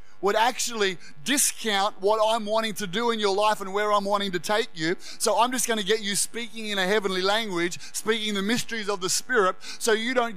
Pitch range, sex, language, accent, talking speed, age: 185-220 Hz, male, English, Australian, 225 wpm, 30-49